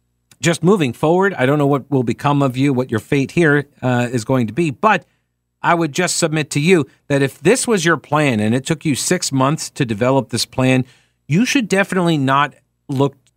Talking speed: 215 wpm